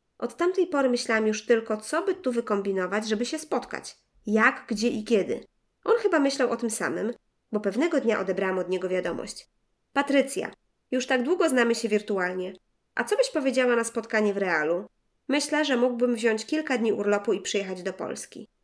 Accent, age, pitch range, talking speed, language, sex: native, 20-39, 195-245 Hz, 180 wpm, Polish, female